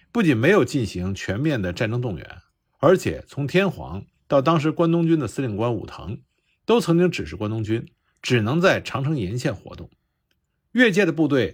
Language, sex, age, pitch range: Chinese, male, 50-69, 110-175 Hz